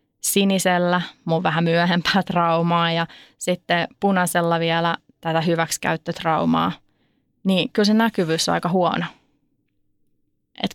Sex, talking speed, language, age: female, 105 wpm, Finnish, 20-39